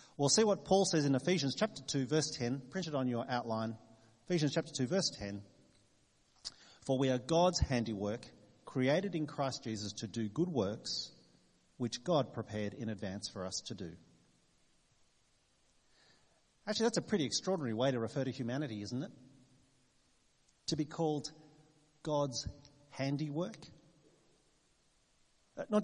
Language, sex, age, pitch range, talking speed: English, male, 40-59, 115-155 Hz, 140 wpm